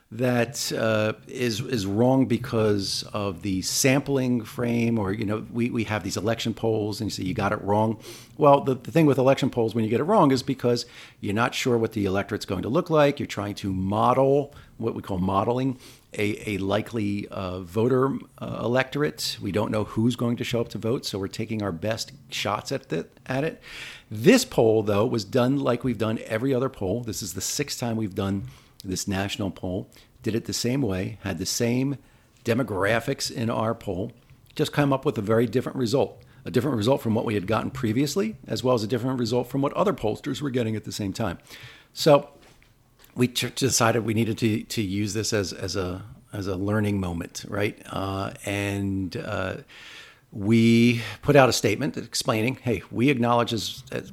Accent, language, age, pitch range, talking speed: American, English, 50-69, 105-130 Hz, 205 wpm